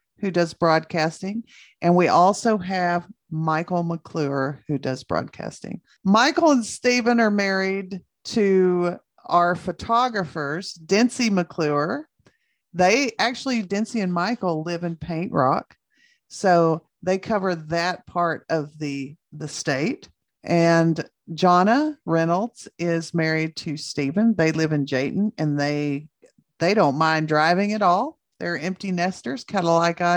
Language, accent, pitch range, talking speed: English, American, 160-210 Hz, 130 wpm